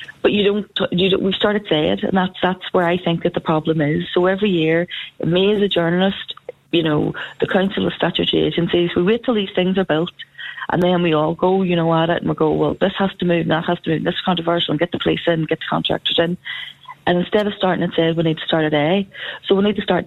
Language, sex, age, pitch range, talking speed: English, female, 30-49, 160-190 Hz, 275 wpm